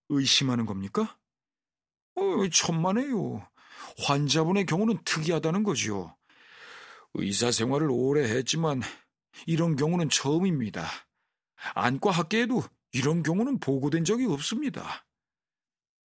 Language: Korean